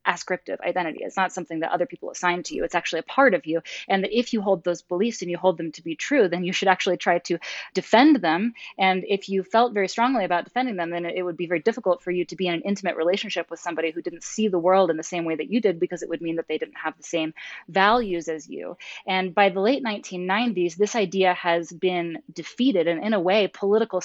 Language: English